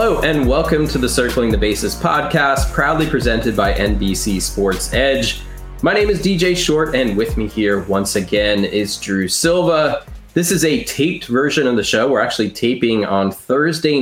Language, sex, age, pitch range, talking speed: English, male, 20-39, 100-140 Hz, 180 wpm